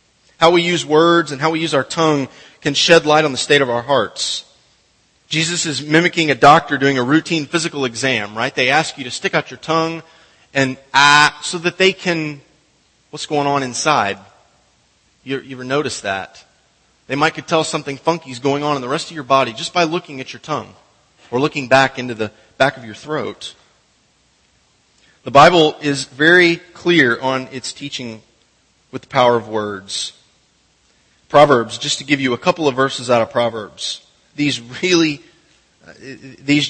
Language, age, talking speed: English, 30-49, 180 wpm